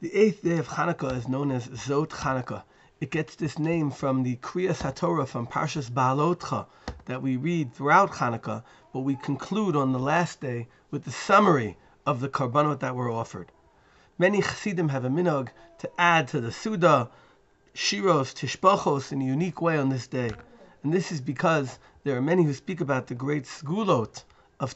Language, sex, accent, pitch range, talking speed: English, male, American, 130-170 Hz, 180 wpm